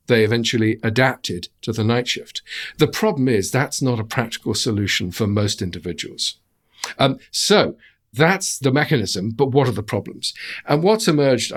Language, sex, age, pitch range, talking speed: English, male, 50-69, 110-140 Hz, 160 wpm